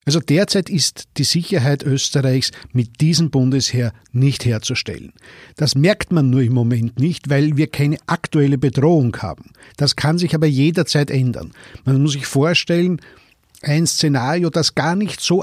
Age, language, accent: 50-69, German, German